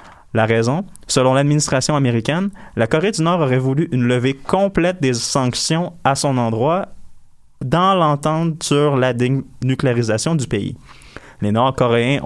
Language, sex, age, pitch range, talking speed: French, male, 20-39, 115-145 Hz, 135 wpm